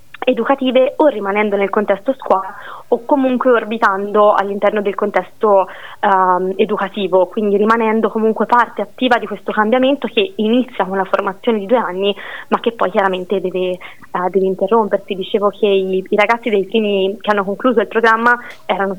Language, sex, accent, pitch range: Italian, female, native, 190-225 Hz